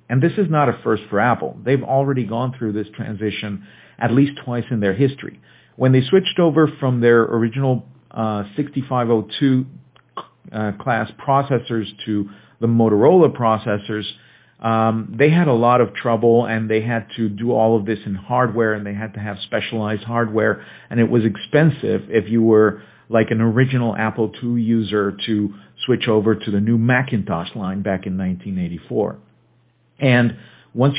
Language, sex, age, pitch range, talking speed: Spanish, male, 50-69, 105-130 Hz, 165 wpm